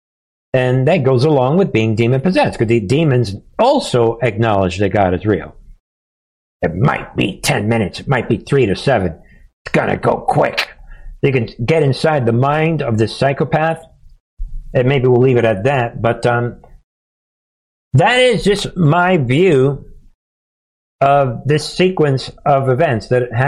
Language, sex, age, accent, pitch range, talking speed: English, male, 60-79, American, 115-145 Hz, 150 wpm